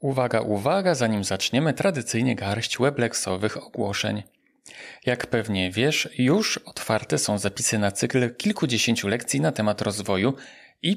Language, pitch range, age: Polish, 100-135 Hz, 40-59